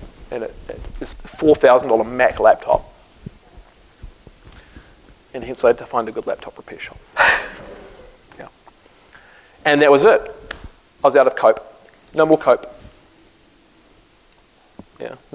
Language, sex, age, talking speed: English, male, 40-59, 125 wpm